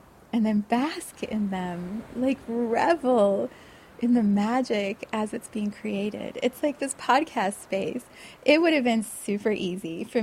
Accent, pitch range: American, 195-240 Hz